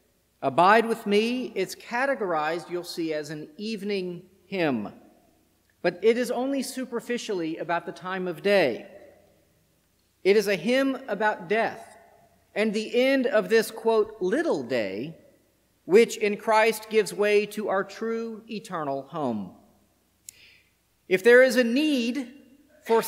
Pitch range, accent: 160-230 Hz, American